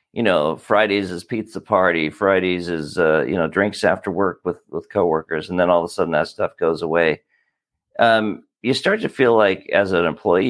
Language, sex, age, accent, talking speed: English, male, 50-69, American, 205 wpm